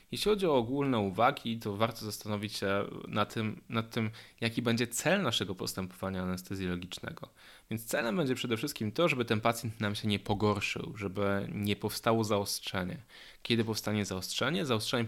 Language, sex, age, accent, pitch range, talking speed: Polish, male, 10-29, native, 100-125 Hz, 160 wpm